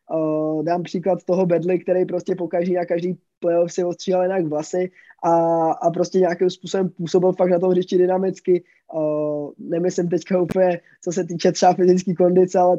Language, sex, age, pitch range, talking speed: Czech, male, 20-39, 175-195 Hz, 175 wpm